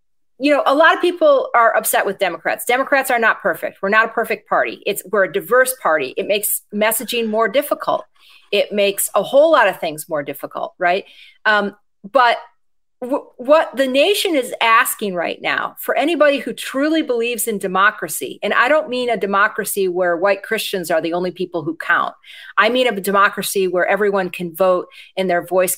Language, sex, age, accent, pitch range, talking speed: English, female, 40-59, American, 185-280 Hz, 190 wpm